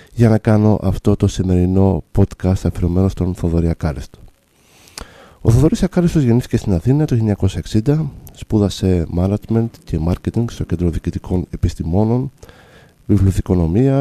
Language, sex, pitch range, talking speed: Greek, male, 90-115 Hz, 115 wpm